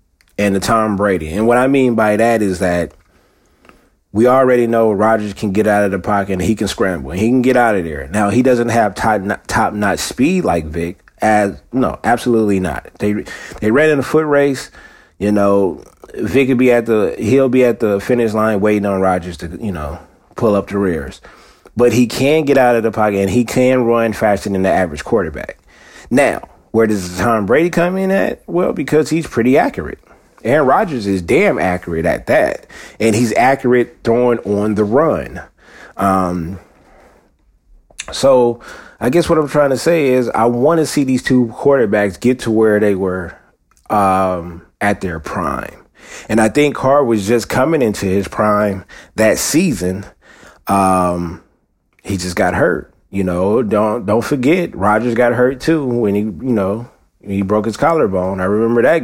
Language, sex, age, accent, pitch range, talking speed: English, male, 30-49, American, 95-125 Hz, 185 wpm